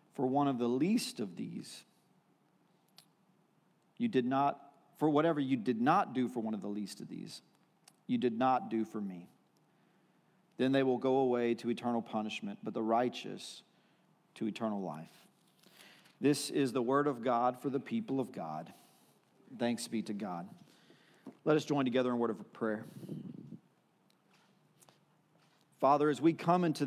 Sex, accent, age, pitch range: male, American, 40-59, 120-150 Hz